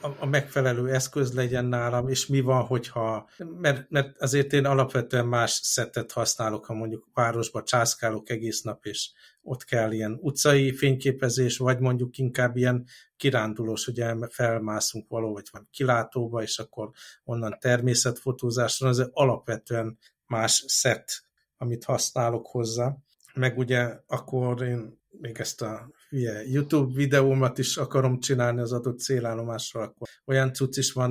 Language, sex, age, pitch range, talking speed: Hungarian, male, 60-79, 115-135 Hz, 140 wpm